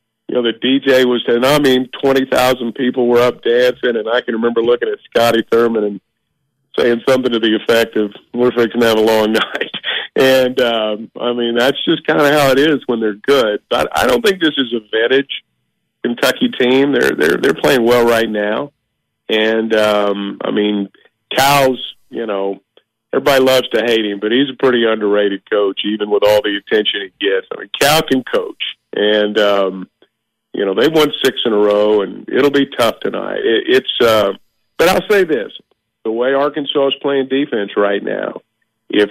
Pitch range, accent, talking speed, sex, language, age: 110-135 Hz, American, 195 wpm, male, English, 50-69